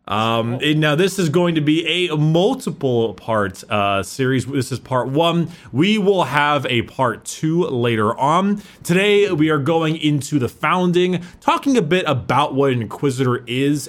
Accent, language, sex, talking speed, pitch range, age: American, English, male, 175 wpm, 120-170 Hz, 20-39